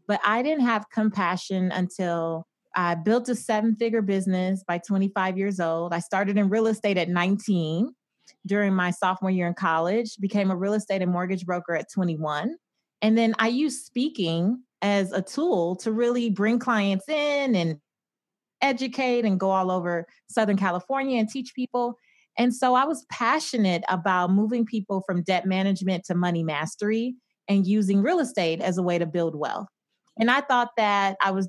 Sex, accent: female, American